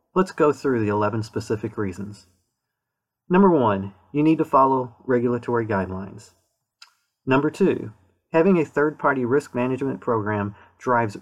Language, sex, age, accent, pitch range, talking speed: English, male, 40-59, American, 105-140 Hz, 135 wpm